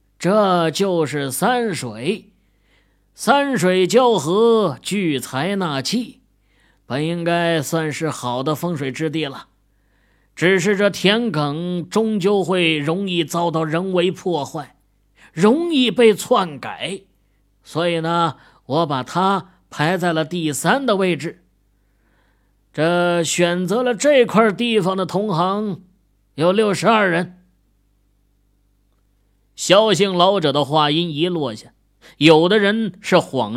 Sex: male